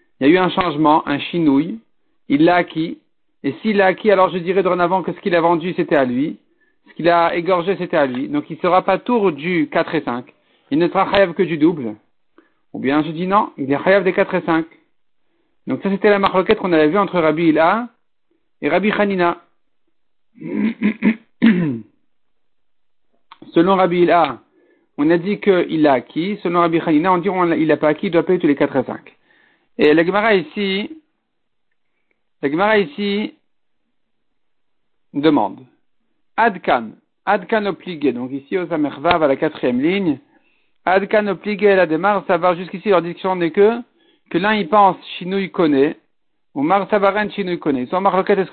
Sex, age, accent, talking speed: male, 50-69, French, 180 wpm